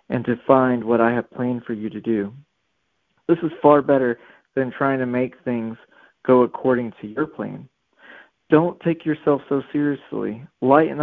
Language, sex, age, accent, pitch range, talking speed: English, male, 40-59, American, 115-140 Hz, 170 wpm